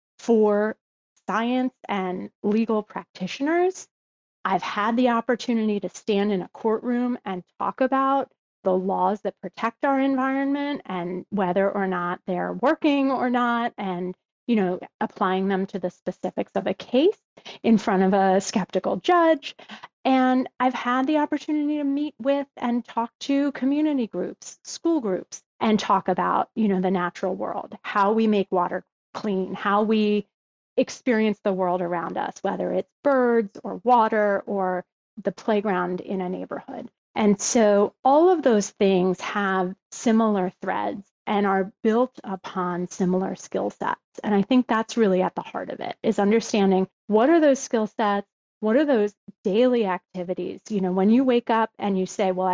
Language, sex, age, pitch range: English, female, 30-49, 190-250 Hz